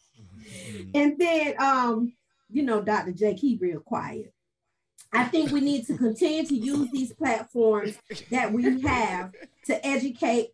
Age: 40-59